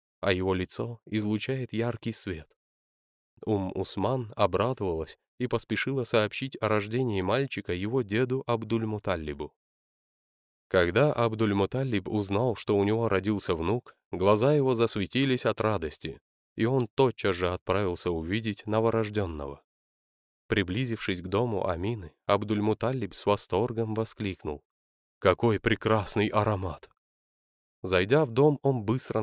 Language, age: Russian, 20-39